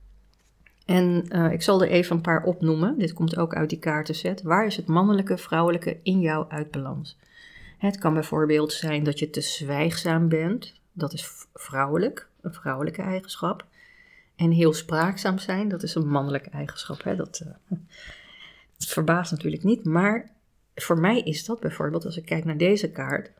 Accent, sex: Dutch, female